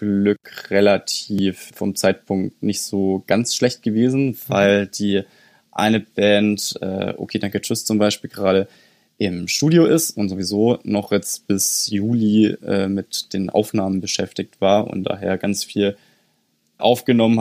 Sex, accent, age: male, German, 20-39